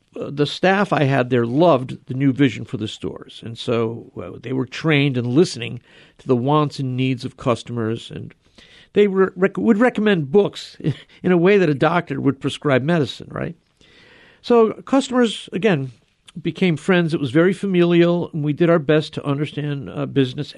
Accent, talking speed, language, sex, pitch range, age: American, 180 wpm, English, male, 135-175 Hz, 50-69